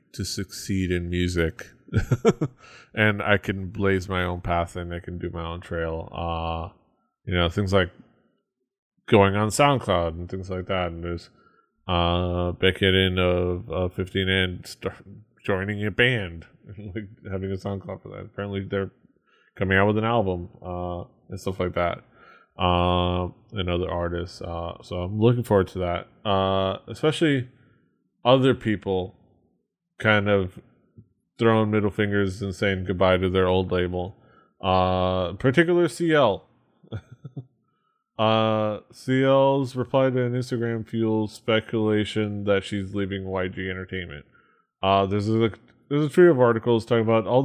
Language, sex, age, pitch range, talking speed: English, male, 20-39, 90-115 Hz, 145 wpm